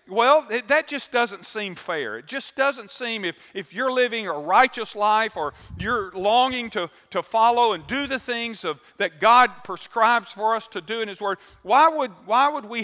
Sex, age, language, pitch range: male, 50-69, English, 195-245 Hz